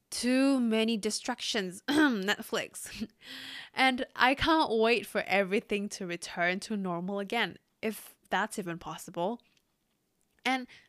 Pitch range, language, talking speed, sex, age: 185-235 Hz, English, 110 wpm, female, 20-39